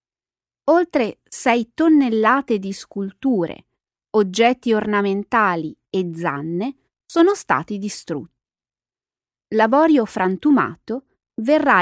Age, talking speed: 30-49, 75 wpm